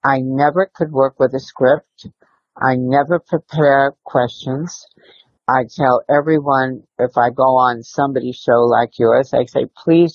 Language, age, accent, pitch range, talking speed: English, 60-79, American, 125-145 Hz, 150 wpm